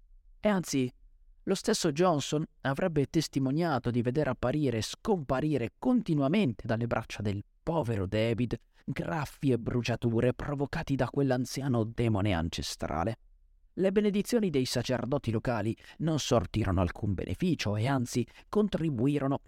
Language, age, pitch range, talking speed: Italian, 30-49, 105-140 Hz, 115 wpm